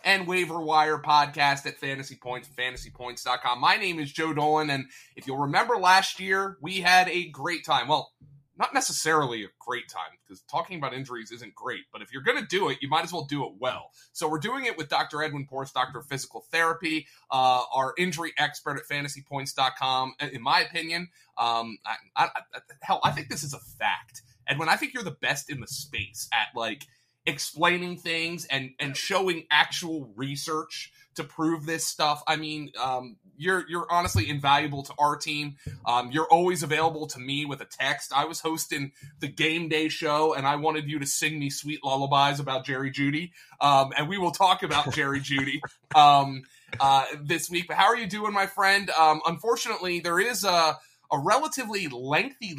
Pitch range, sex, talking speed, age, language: 135-165 Hz, male, 190 wpm, 30-49, English